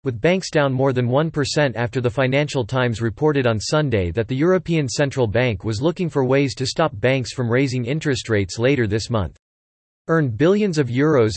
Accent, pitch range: American, 115-150 Hz